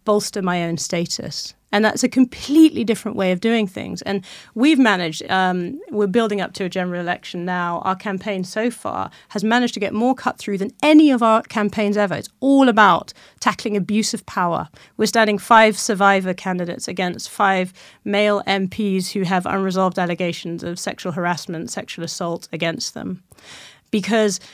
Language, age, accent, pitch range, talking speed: English, 30-49, British, 190-240 Hz, 170 wpm